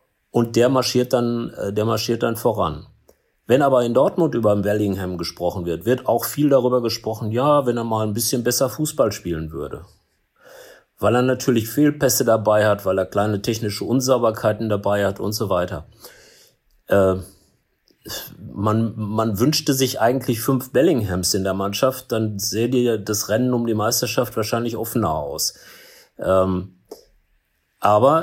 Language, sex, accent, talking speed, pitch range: German, male, German, 150 wpm, 105-125 Hz